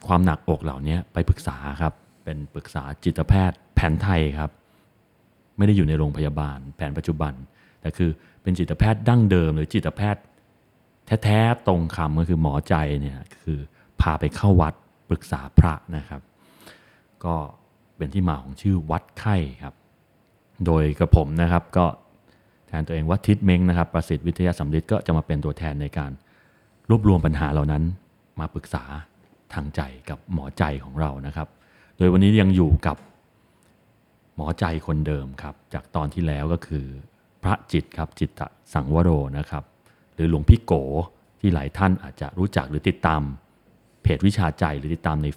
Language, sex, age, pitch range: Thai, male, 30-49, 75-95 Hz